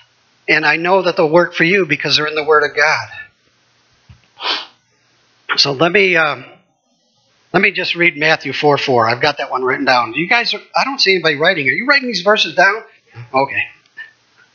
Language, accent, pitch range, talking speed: English, American, 130-175 Hz, 195 wpm